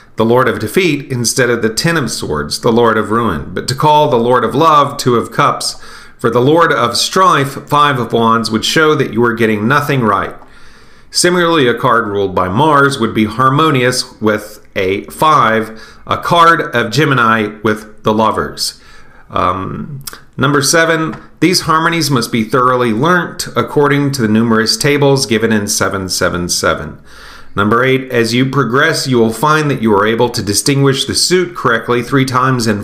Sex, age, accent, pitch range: male, 40-59, American, 115-145 Hz